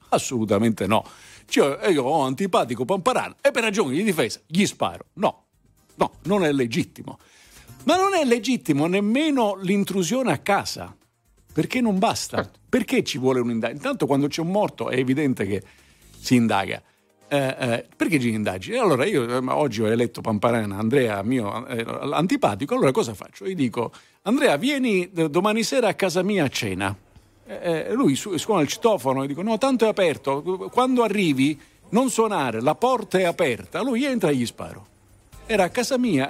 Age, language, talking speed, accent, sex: 50-69, Italian, 165 wpm, native, male